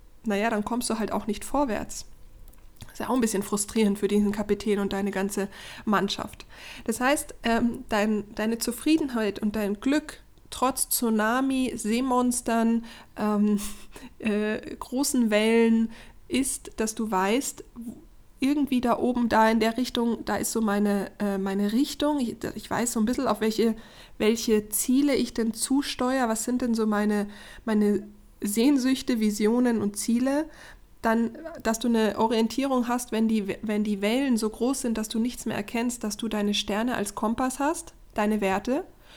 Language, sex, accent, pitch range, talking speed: German, female, German, 210-250 Hz, 155 wpm